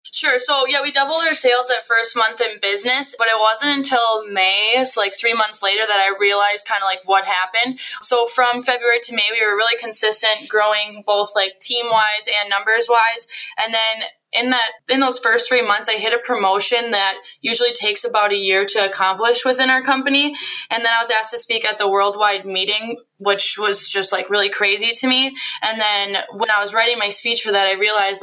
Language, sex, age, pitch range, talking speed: English, female, 10-29, 200-235 Hz, 215 wpm